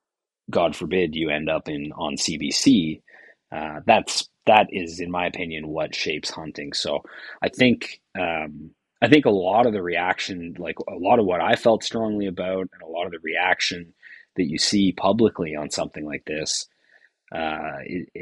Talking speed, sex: 175 wpm, male